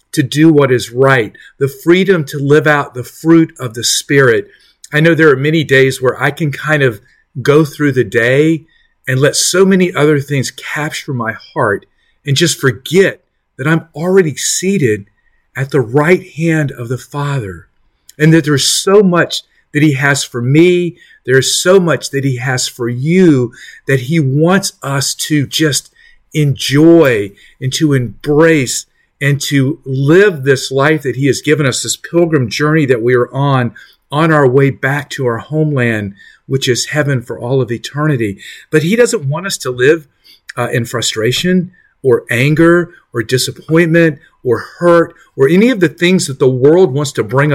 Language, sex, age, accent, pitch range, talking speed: English, male, 40-59, American, 130-165 Hz, 175 wpm